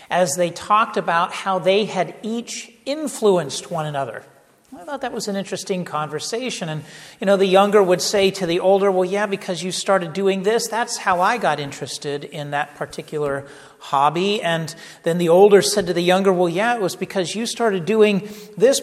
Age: 50-69